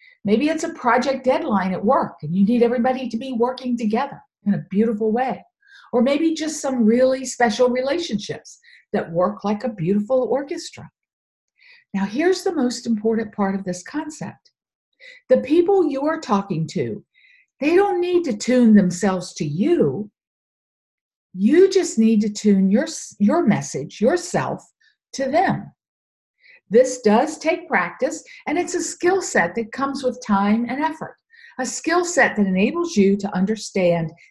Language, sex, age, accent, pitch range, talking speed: English, female, 50-69, American, 205-305 Hz, 155 wpm